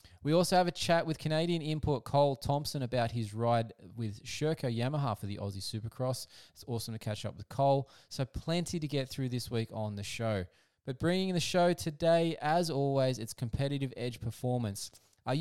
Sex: male